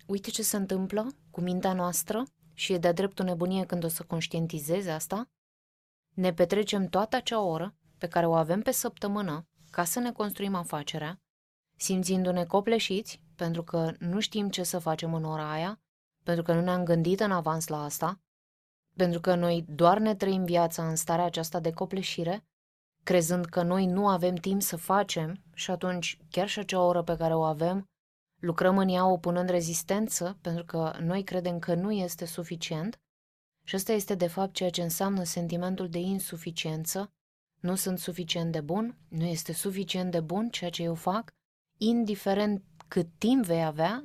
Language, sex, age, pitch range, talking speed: Romanian, female, 20-39, 165-195 Hz, 175 wpm